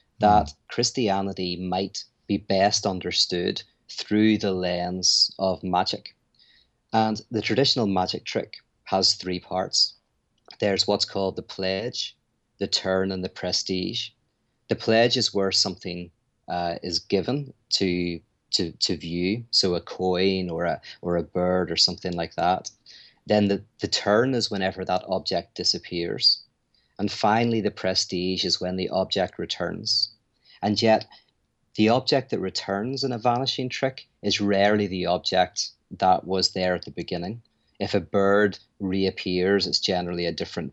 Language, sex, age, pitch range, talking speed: English, male, 30-49, 90-110 Hz, 145 wpm